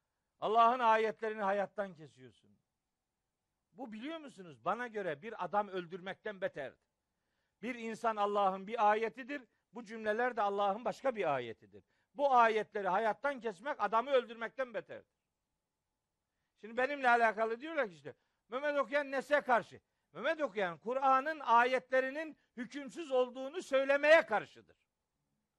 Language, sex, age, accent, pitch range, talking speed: Turkish, male, 50-69, native, 210-265 Hz, 115 wpm